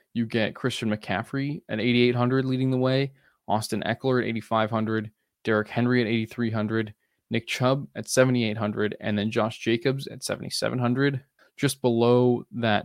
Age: 20-39